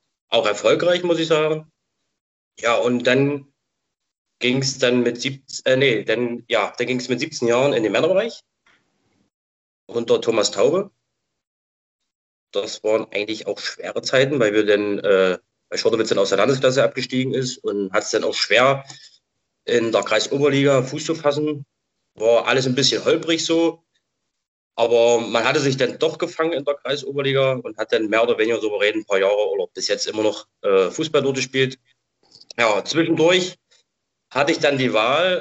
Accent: German